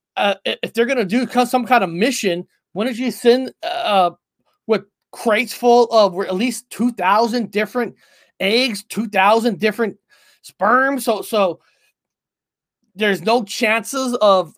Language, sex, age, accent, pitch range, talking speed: English, male, 30-49, American, 195-255 Hz, 140 wpm